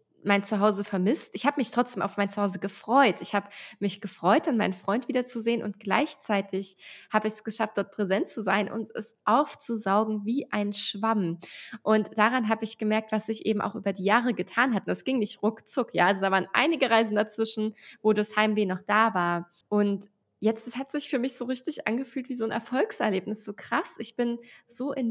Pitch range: 195-230 Hz